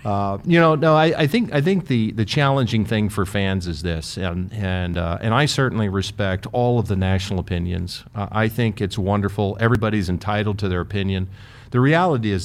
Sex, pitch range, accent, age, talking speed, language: male, 100-115 Hz, American, 50-69, 200 wpm, English